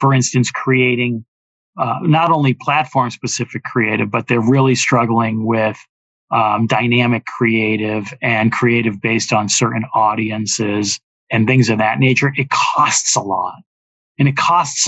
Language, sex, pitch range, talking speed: English, male, 110-130 Hz, 140 wpm